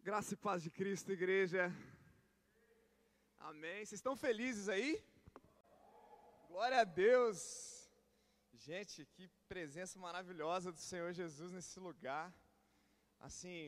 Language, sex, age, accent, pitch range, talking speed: Portuguese, male, 20-39, Brazilian, 155-205 Hz, 105 wpm